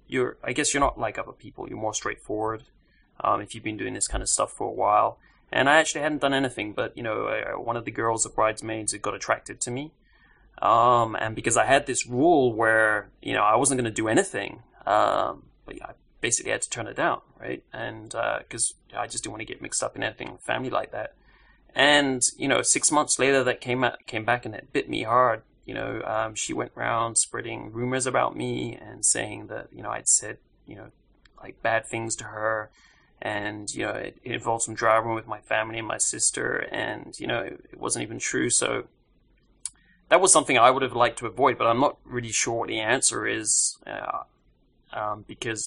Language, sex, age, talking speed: English, male, 20-39, 225 wpm